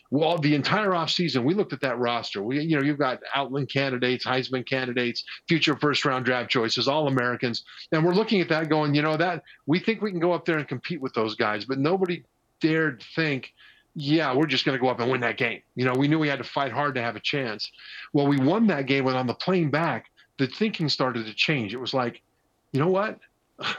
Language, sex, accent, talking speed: English, male, American, 240 wpm